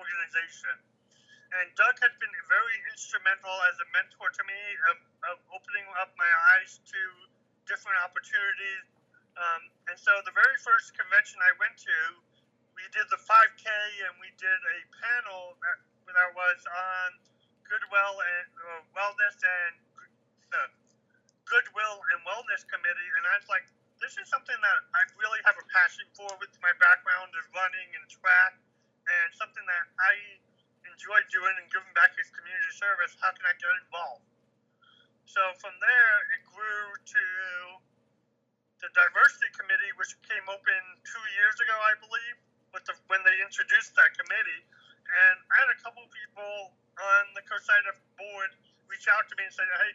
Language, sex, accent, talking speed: English, male, American, 160 wpm